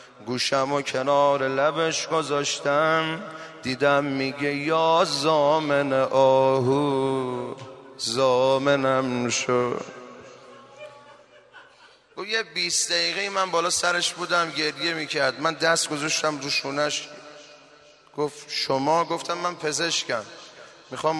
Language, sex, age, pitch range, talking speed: Persian, male, 30-49, 140-175 Hz, 85 wpm